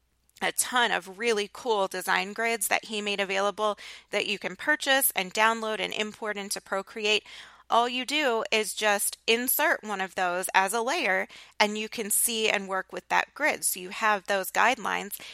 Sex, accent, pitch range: female, American, 190-235 Hz